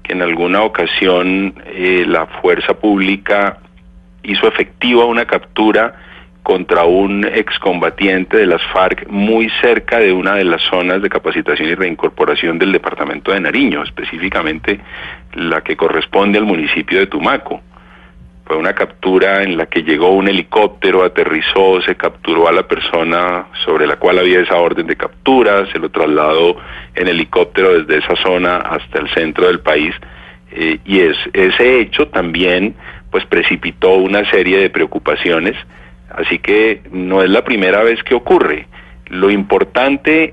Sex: male